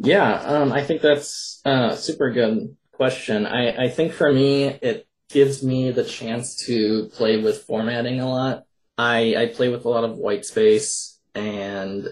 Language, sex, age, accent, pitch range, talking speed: English, male, 20-39, American, 110-140 Hz, 175 wpm